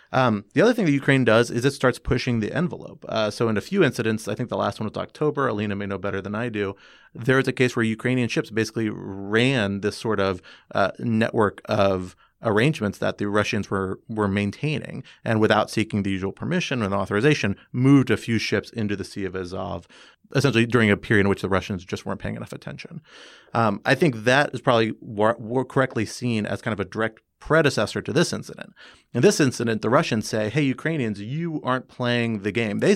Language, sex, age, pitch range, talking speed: English, male, 30-49, 100-125 Hz, 215 wpm